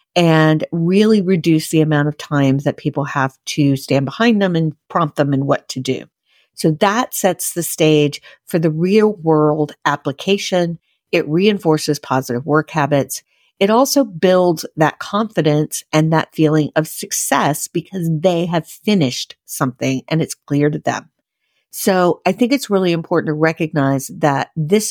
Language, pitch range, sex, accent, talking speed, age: English, 145-175 Hz, female, American, 160 wpm, 50-69